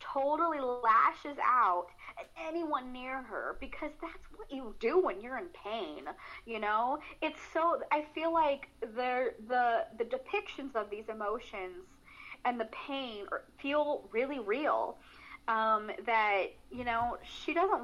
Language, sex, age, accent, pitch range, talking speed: English, female, 30-49, American, 220-330 Hz, 140 wpm